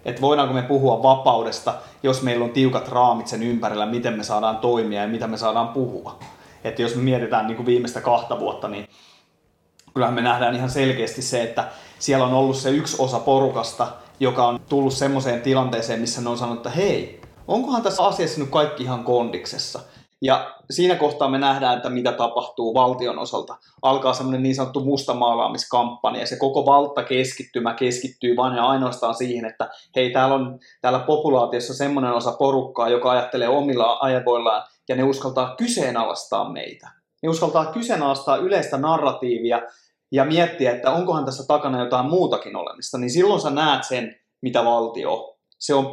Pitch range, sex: 120-140 Hz, male